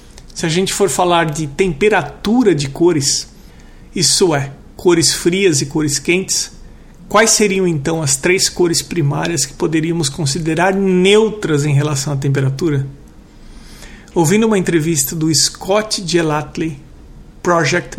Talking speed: 125 wpm